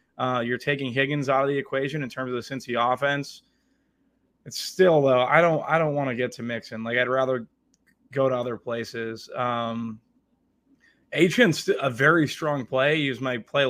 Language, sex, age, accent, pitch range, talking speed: English, male, 20-39, American, 125-145 Hz, 195 wpm